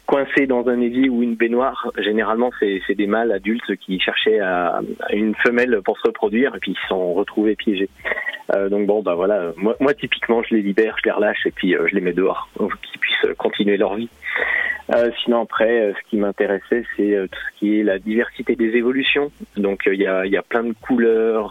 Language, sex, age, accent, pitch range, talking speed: French, male, 30-49, French, 100-125 Hz, 230 wpm